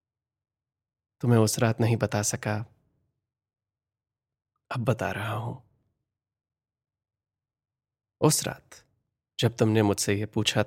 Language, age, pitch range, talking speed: Hindi, 20-39, 105-130 Hz, 95 wpm